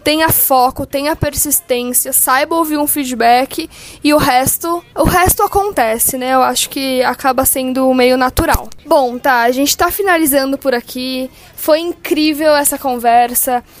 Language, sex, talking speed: Portuguese, female, 145 wpm